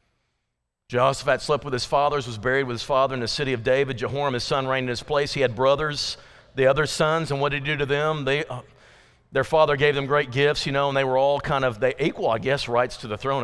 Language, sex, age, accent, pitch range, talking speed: English, male, 50-69, American, 130-165 Hz, 265 wpm